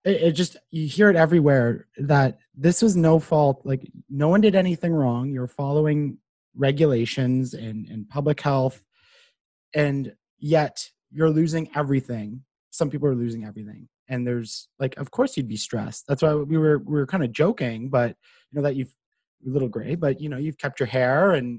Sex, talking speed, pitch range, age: male, 185 wpm, 125-155 Hz, 30-49